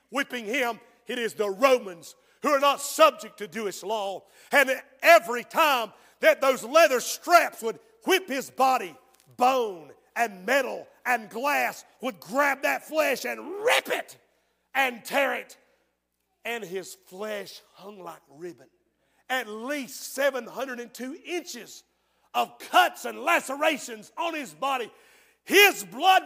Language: English